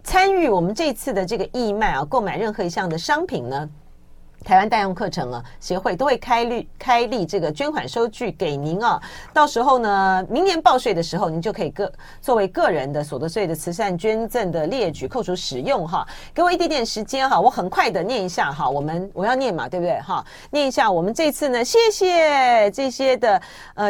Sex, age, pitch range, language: female, 40-59, 190-280 Hz, Chinese